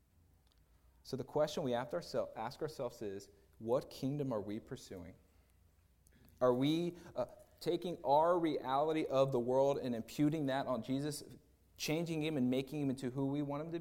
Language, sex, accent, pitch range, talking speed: English, male, American, 90-130 Hz, 160 wpm